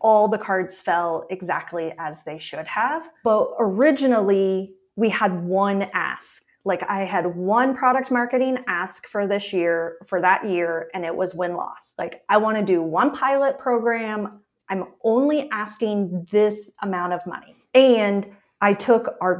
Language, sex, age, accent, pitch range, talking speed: English, female, 30-49, American, 185-225 Hz, 160 wpm